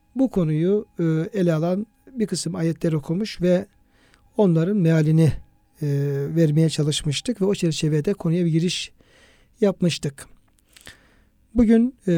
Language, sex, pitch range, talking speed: Turkish, male, 160-190 Hz, 105 wpm